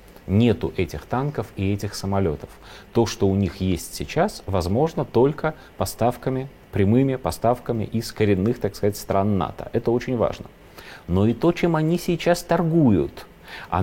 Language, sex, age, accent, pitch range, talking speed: Russian, male, 30-49, native, 95-125 Hz, 150 wpm